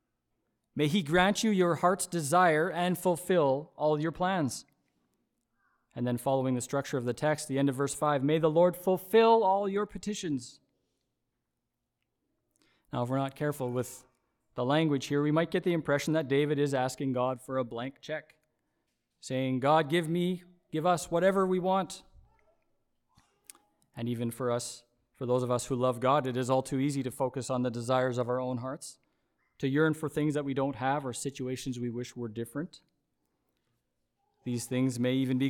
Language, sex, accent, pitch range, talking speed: English, male, American, 130-160 Hz, 185 wpm